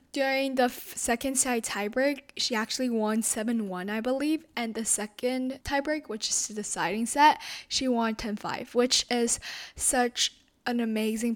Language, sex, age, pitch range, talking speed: English, female, 10-29, 210-265 Hz, 155 wpm